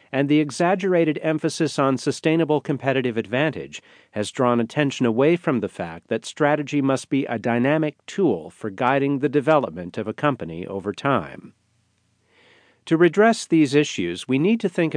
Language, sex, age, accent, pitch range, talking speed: English, male, 50-69, American, 115-150 Hz, 155 wpm